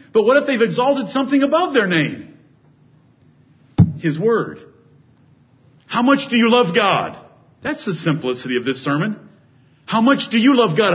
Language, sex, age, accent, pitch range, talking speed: English, male, 50-69, American, 125-155 Hz, 160 wpm